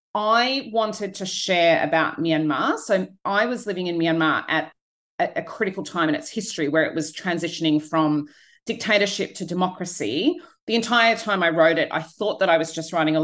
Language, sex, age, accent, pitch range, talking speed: English, female, 30-49, Australian, 160-225 Hz, 185 wpm